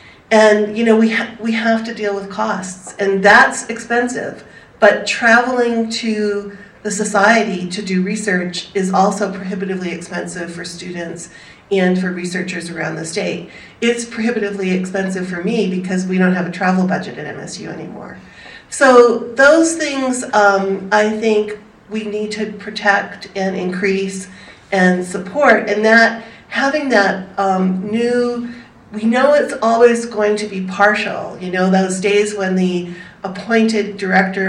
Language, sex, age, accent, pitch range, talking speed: English, female, 40-59, American, 185-225 Hz, 150 wpm